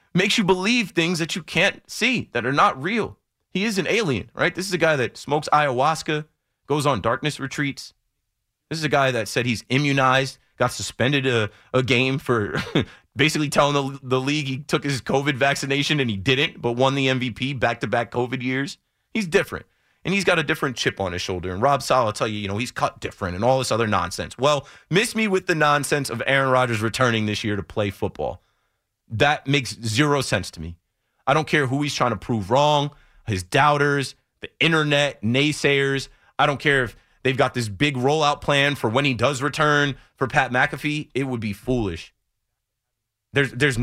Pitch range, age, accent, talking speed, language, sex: 115-145 Hz, 30-49, American, 205 wpm, English, male